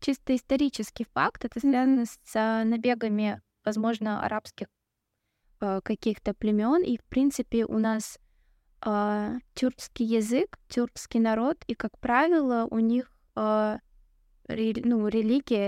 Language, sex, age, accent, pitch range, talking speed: Russian, female, 20-39, native, 220-250 Hz, 115 wpm